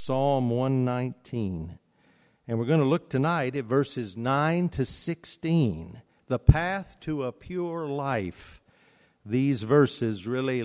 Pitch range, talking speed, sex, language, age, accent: 115-145 Hz, 125 wpm, male, English, 50-69, American